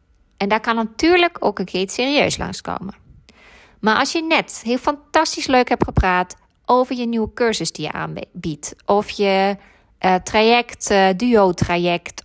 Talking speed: 155 wpm